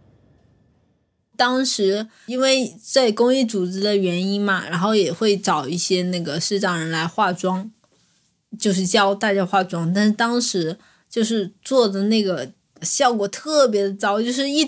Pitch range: 200-265 Hz